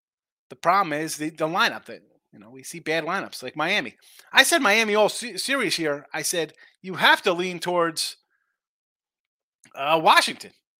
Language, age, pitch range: English, 30-49, 150-230 Hz